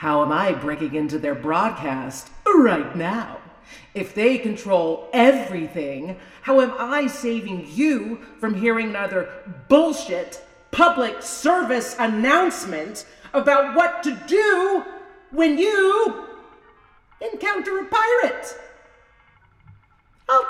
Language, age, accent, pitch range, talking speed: English, 40-59, American, 180-305 Hz, 100 wpm